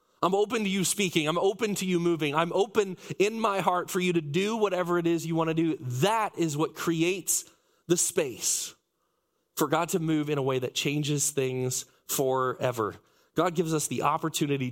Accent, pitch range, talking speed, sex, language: American, 125-160 Hz, 195 wpm, male, English